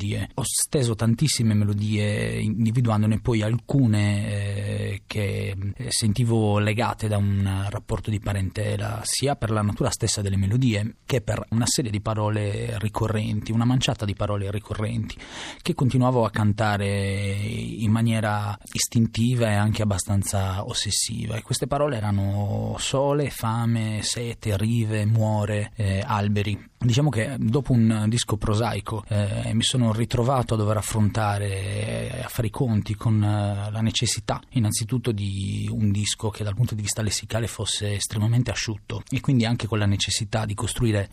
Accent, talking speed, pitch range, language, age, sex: native, 145 wpm, 105-115 Hz, Italian, 30-49, male